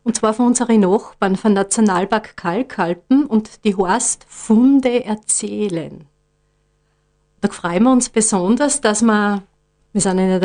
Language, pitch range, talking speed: German, 205-245 Hz, 145 wpm